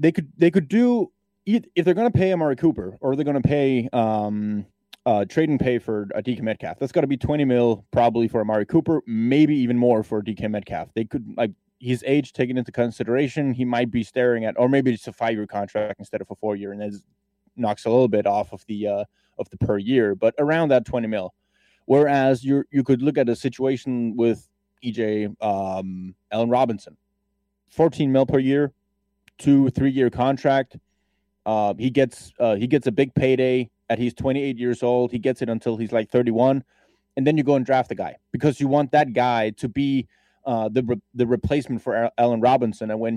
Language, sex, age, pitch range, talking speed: English, male, 20-39, 115-140 Hz, 215 wpm